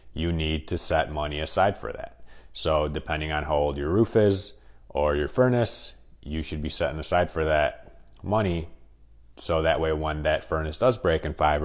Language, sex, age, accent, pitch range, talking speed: English, male, 30-49, American, 75-100 Hz, 190 wpm